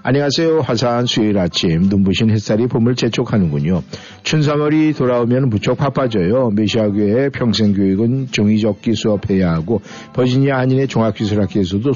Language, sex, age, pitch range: Korean, male, 50-69, 100-135 Hz